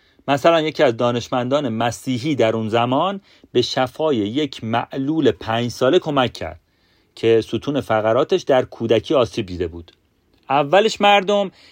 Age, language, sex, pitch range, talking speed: 40-59, Persian, male, 105-160 Hz, 135 wpm